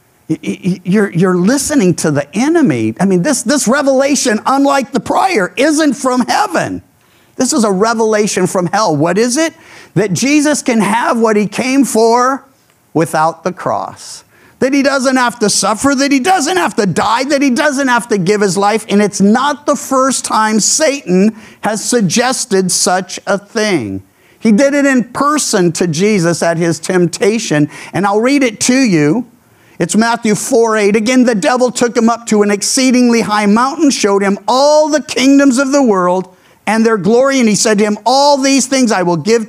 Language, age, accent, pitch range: English, 50-69, American, 185-260 Hz